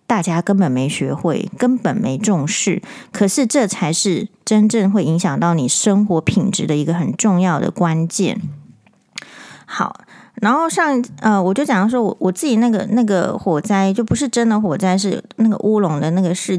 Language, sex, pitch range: Chinese, female, 175-230 Hz